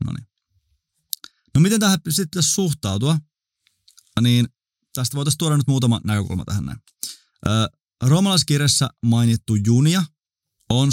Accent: native